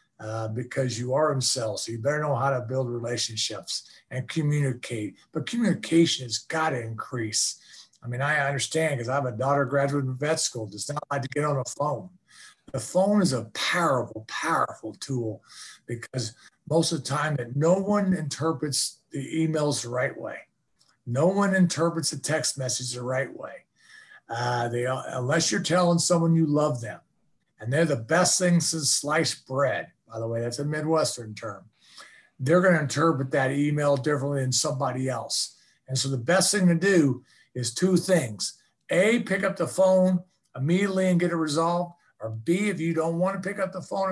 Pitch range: 125-165 Hz